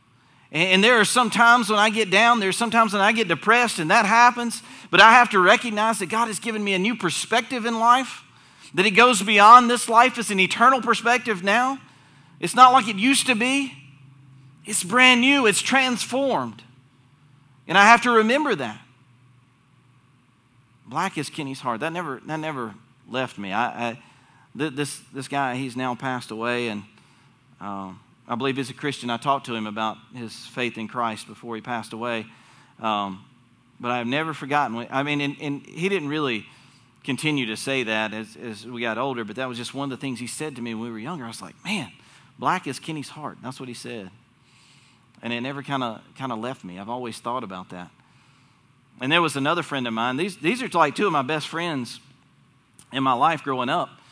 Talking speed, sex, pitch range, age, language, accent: 205 wpm, male, 125-200 Hz, 40-59, English, American